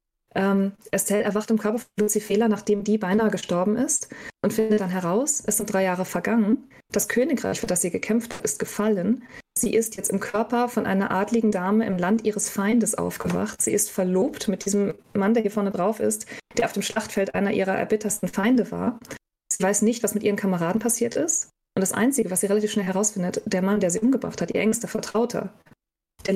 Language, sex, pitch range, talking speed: German, female, 195-220 Hz, 205 wpm